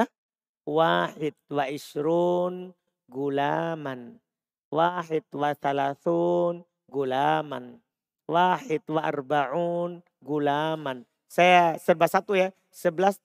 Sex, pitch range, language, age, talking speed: male, 160-205 Hz, Indonesian, 40-59, 70 wpm